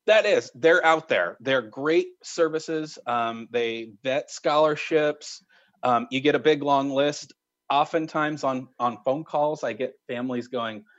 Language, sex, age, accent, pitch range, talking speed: English, male, 30-49, American, 125-175 Hz, 155 wpm